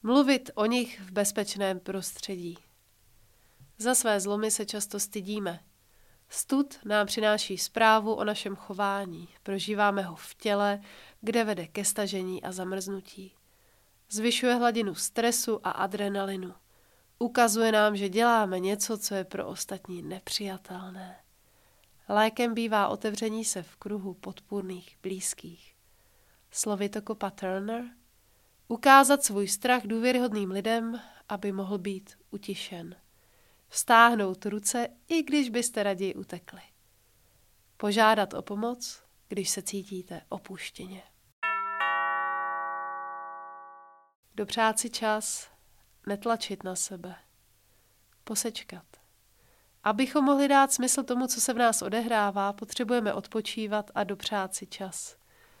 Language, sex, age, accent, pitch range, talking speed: English, female, 30-49, Czech, 180-225 Hz, 110 wpm